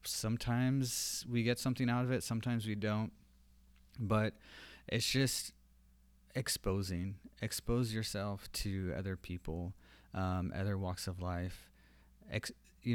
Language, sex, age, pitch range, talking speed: English, male, 30-49, 90-105 Hz, 115 wpm